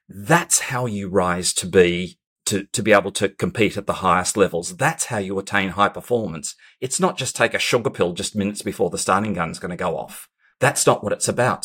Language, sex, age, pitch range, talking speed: English, male, 40-59, 100-125 Hz, 225 wpm